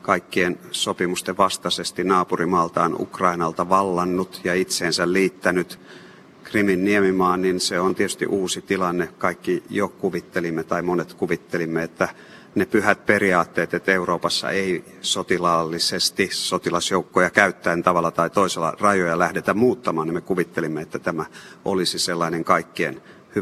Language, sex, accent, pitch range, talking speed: Finnish, male, native, 85-95 Hz, 120 wpm